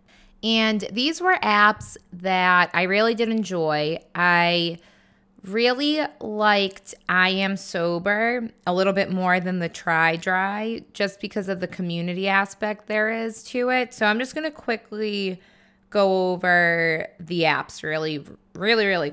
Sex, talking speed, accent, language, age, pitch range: female, 145 wpm, American, English, 20-39, 170-215 Hz